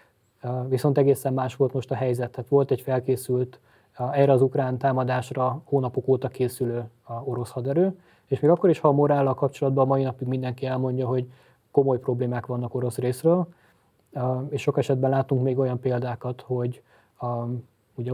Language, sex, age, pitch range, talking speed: Hungarian, male, 20-39, 125-135 Hz, 160 wpm